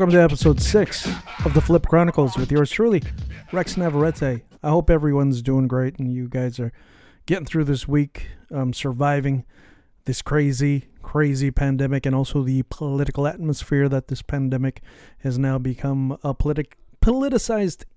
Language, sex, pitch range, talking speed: English, male, 130-155 Hz, 155 wpm